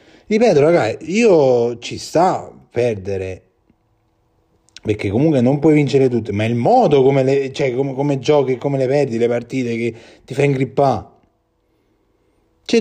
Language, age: Italian, 30-49